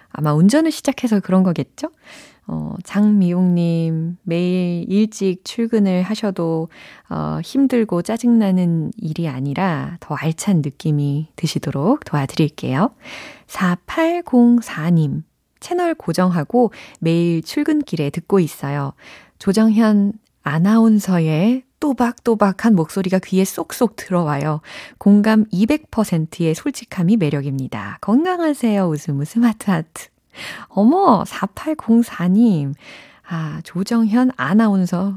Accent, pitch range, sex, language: native, 160-220 Hz, female, Korean